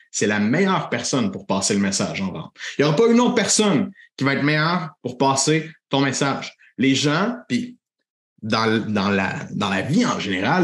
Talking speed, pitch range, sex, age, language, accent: 205 wpm, 130-170 Hz, male, 30-49, French, Canadian